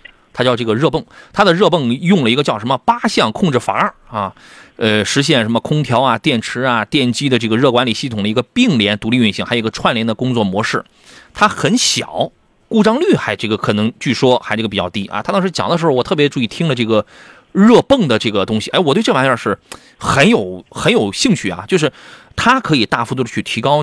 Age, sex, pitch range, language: 30-49, male, 110-165 Hz, Chinese